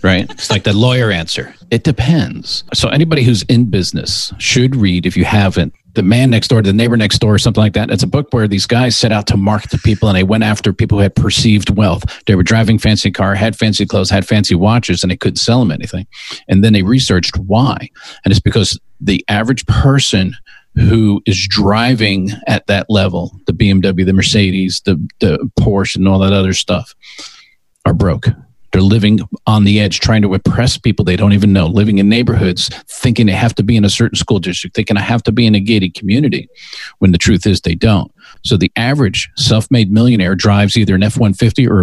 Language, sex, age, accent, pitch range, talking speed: English, male, 40-59, American, 100-120 Hz, 220 wpm